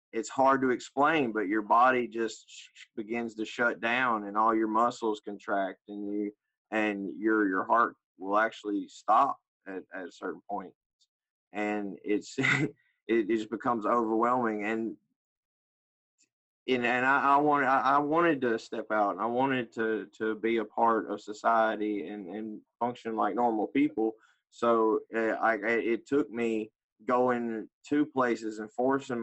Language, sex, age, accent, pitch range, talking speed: English, male, 20-39, American, 105-125 Hz, 160 wpm